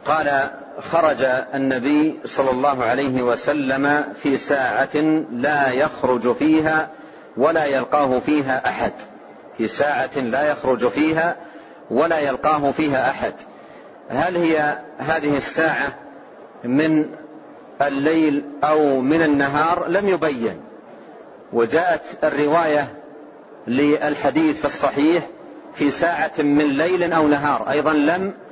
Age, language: 40-59, Arabic